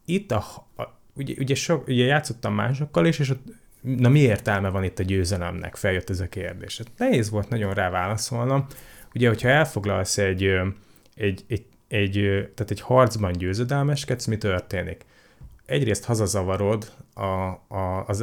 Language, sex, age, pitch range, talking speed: Hungarian, male, 30-49, 95-120 Hz, 120 wpm